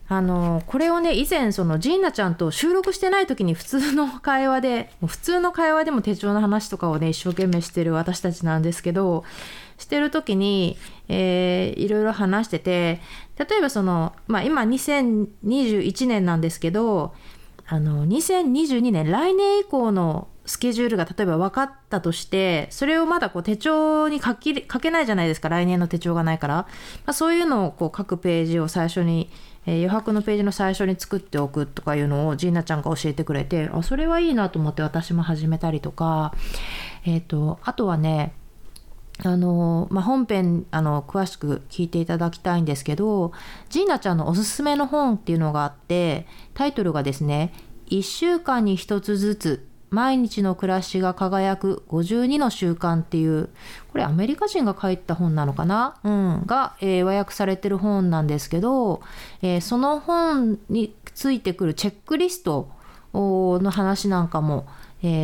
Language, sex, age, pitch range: Japanese, female, 30-49, 165-240 Hz